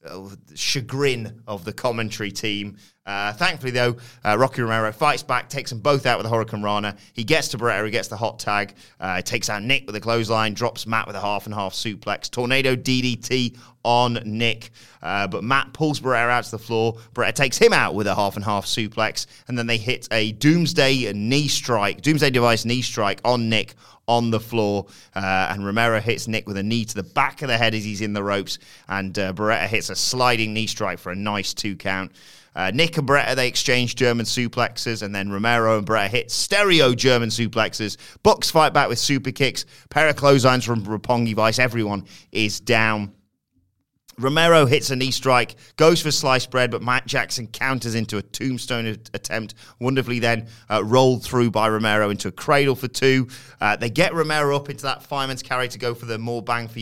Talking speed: 205 wpm